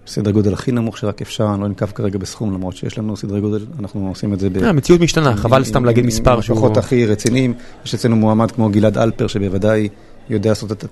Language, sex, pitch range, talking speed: Hebrew, male, 105-120 Hz, 210 wpm